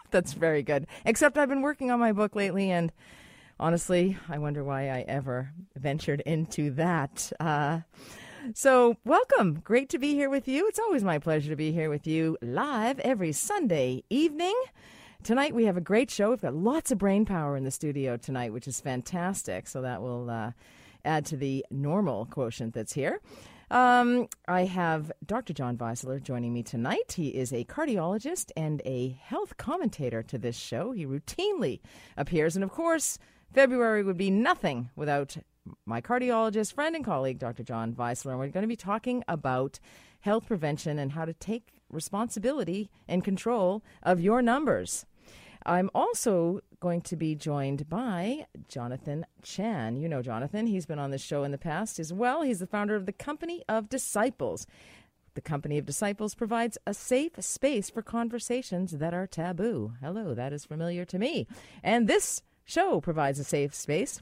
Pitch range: 140-230 Hz